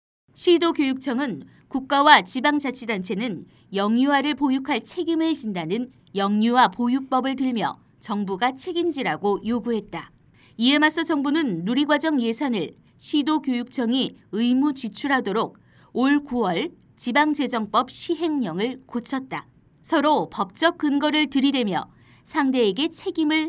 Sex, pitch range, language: female, 220-295 Hz, Korean